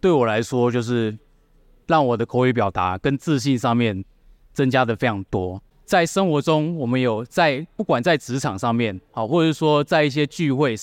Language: Chinese